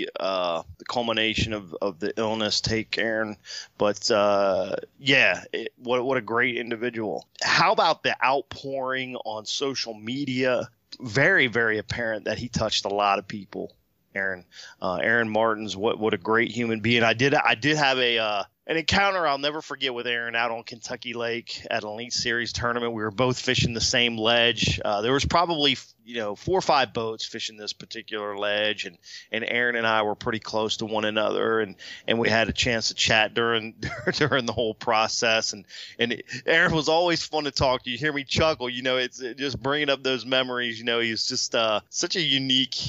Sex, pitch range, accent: male, 110-130 Hz, American